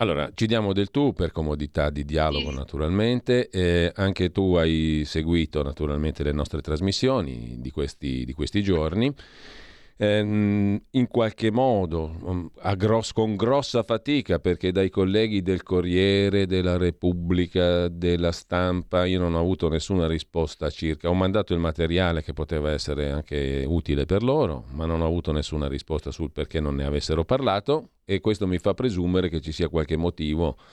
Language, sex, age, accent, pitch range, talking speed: Italian, male, 40-59, native, 80-100 Hz, 160 wpm